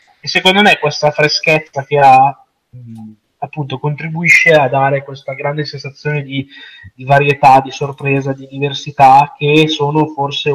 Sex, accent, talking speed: male, native, 135 wpm